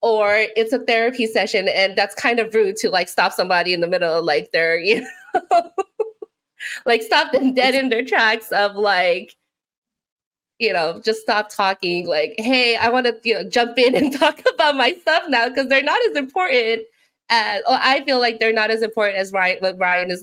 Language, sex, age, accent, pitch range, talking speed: English, female, 20-39, American, 195-280 Hz, 200 wpm